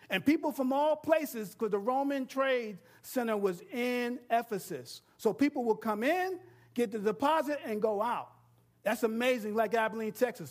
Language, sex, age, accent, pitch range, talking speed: English, male, 50-69, American, 155-245 Hz, 165 wpm